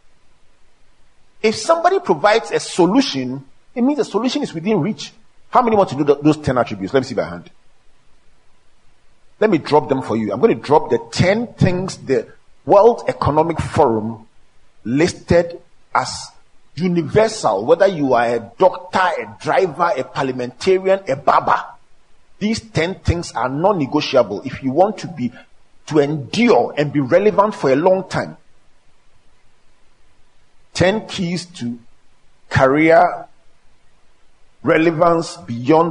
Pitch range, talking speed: 130-180 Hz, 140 wpm